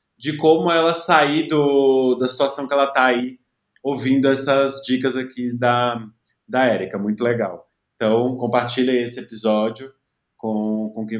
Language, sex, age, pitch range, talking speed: Portuguese, male, 20-39, 110-130 Hz, 145 wpm